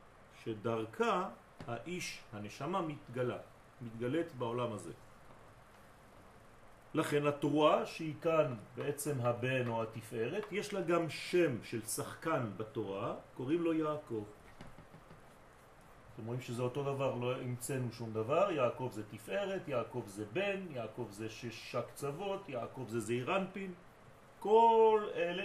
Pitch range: 115-155 Hz